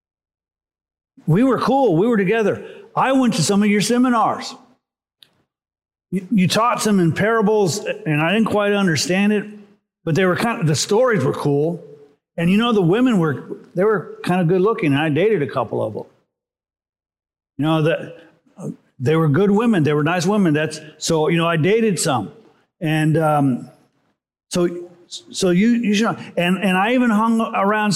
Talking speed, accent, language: 180 wpm, American, English